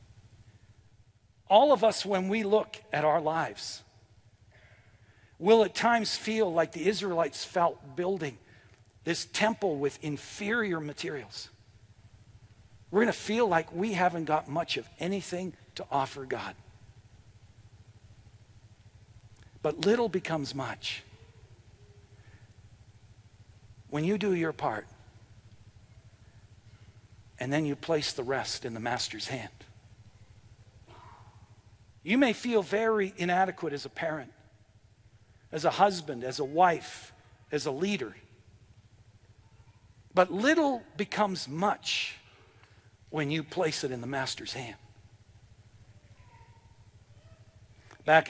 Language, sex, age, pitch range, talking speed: English, male, 60-79, 110-160 Hz, 105 wpm